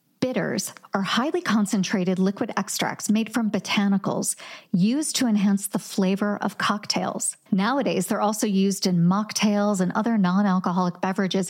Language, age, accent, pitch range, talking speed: English, 40-59, American, 190-240 Hz, 135 wpm